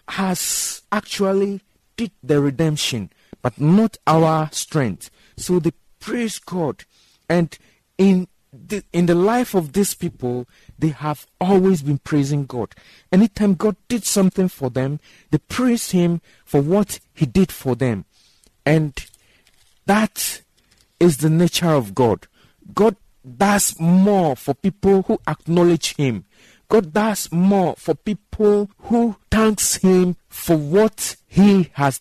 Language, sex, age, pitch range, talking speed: English, male, 50-69, 145-200 Hz, 130 wpm